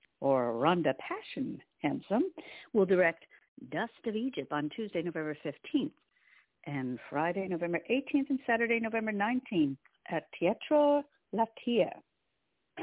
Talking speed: 110 wpm